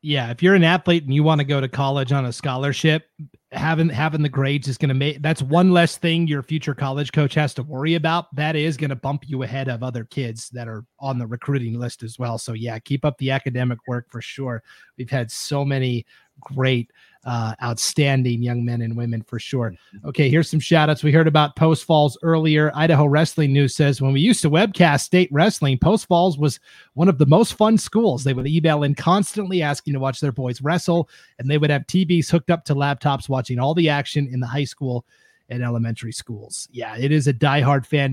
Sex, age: male, 30-49